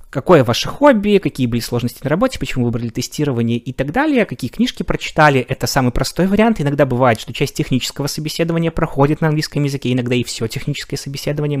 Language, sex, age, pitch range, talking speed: Russian, male, 20-39, 115-145 Hz, 185 wpm